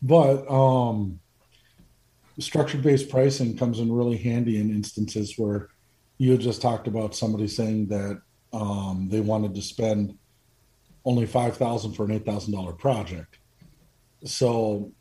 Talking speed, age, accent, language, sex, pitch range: 125 wpm, 40-59, American, English, male, 105-125 Hz